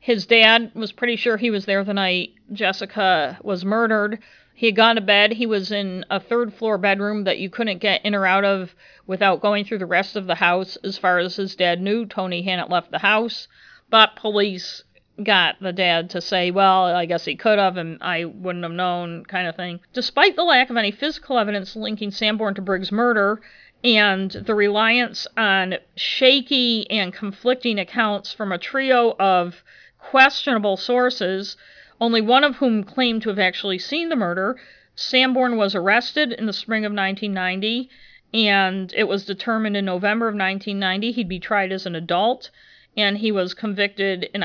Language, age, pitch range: English, 50-69, 190-230 Hz